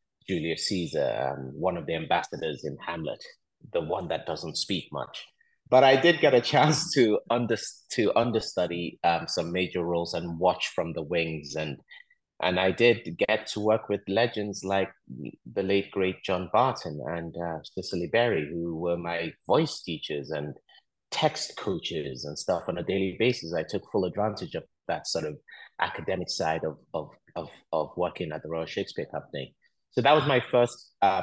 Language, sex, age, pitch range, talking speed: English, male, 30-49, 80-105 Hz, 175 wpm